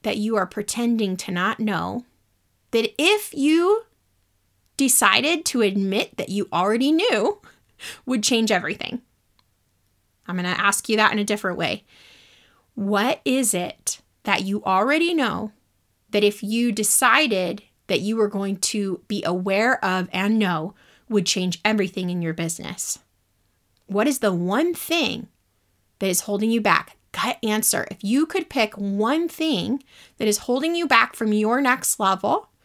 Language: English